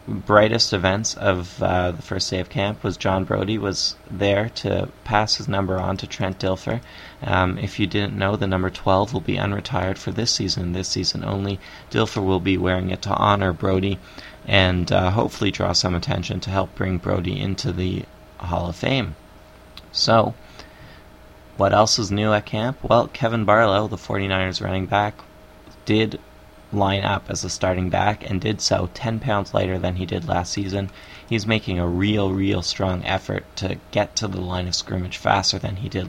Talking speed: 185 wpm